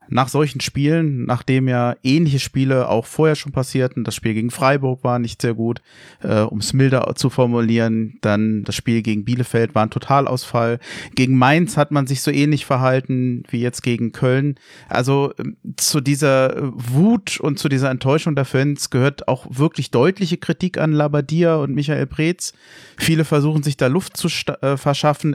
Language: German